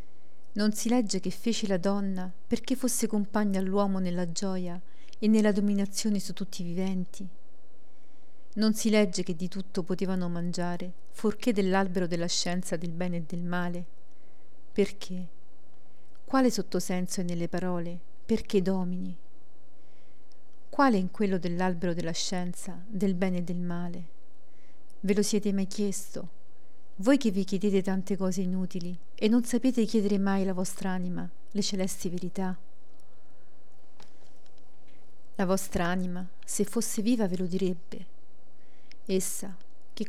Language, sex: Italian, female